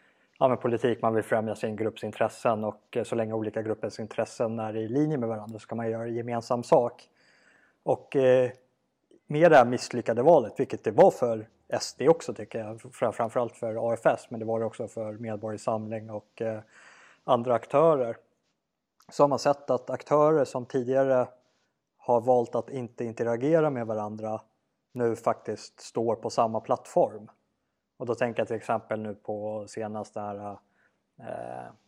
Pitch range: 110-120 Hz